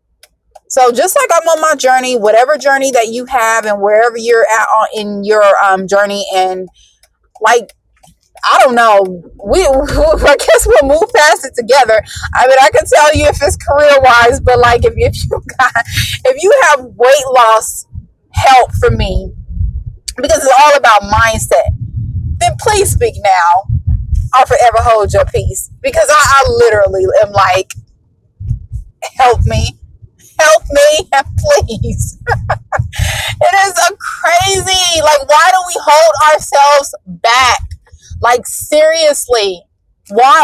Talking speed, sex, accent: 140 wpm, female, American